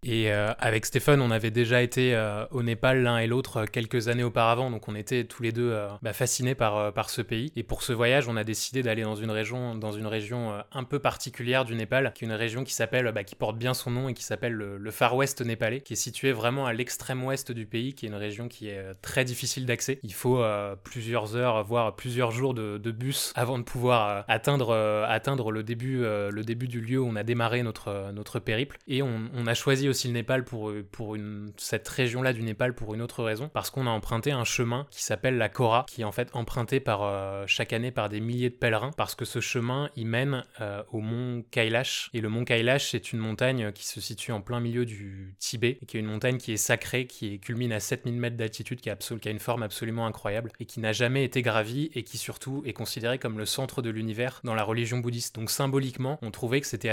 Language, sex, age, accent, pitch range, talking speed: French, male, 20-39, French, 110-125 Hz, 255 wpm